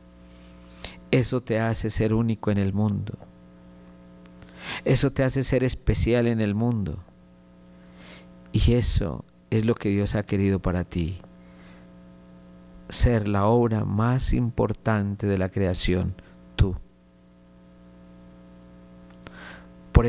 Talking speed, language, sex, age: 110 wpm, Spanish, male, 50-69